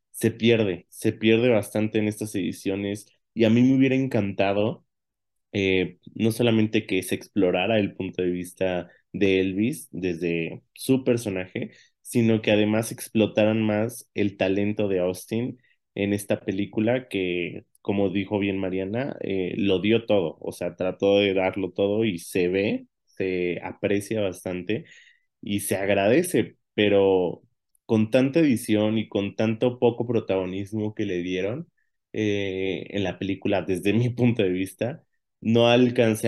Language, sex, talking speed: Spanish, male, 145 wpm